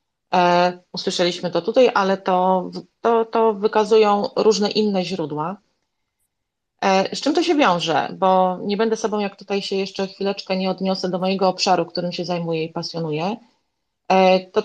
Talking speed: 145 wpm